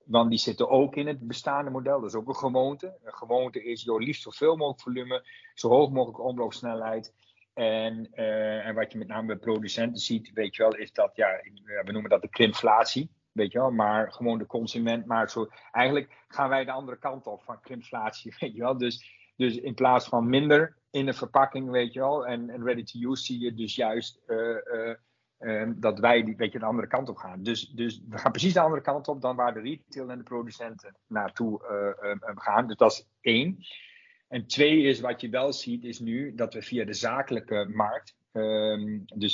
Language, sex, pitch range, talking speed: Dutch, male, 110-130 Hz, 210 wpm